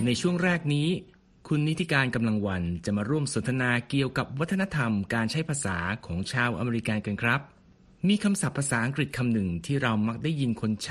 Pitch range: 105-145 Hz